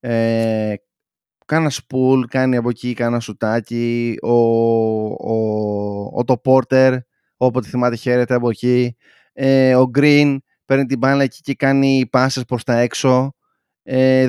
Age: 20-39